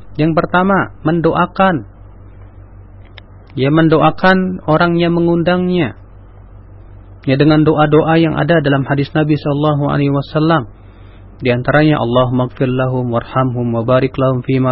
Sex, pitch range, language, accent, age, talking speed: male, 105-155 Hz, Indonesian, native, 40-59, 100 wpm